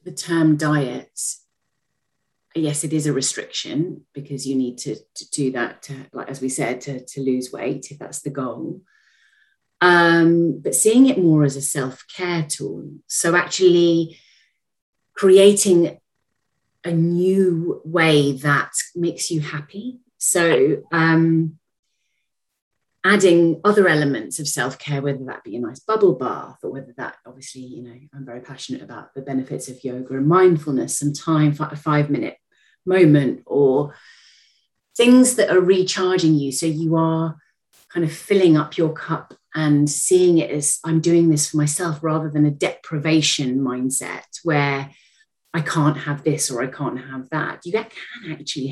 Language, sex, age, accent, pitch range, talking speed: English, female, 30-49, British, 135-170 Hz, 155 wpm